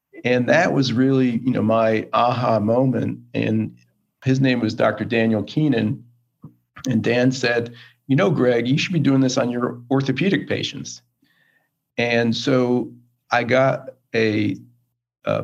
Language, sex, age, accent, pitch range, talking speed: English, male, 40-59, American, 110-130 Hz, 145 wpm